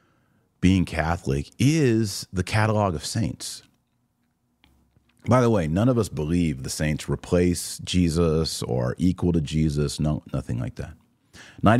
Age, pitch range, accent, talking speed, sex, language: 40-59, 80-115 Hz, American, 135 wpm, male, English